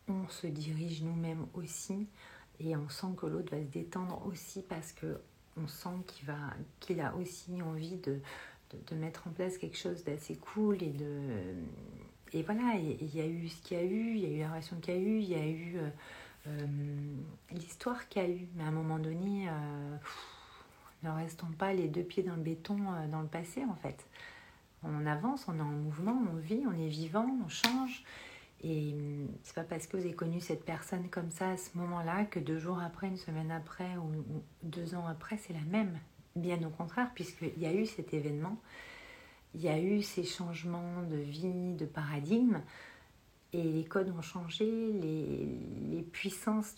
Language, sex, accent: French, female, French